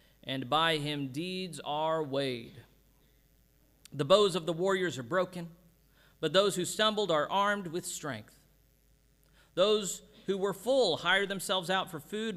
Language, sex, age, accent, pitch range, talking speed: English, male, 40-59, American, 140-190 Hz, 145 wpm